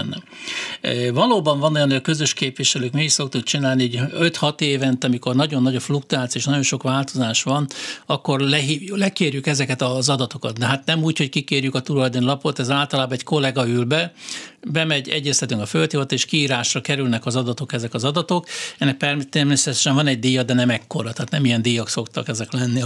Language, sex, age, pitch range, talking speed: Hungarian, male, 60-79, 130-150 Hz, 190 wpm